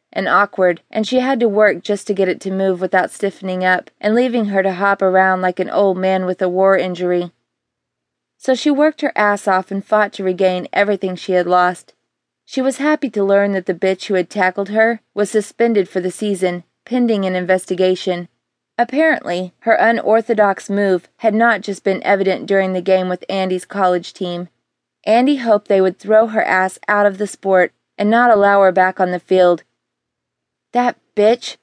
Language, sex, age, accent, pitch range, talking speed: English, female, 20-39, American, 185-215 Hz, 190 wpm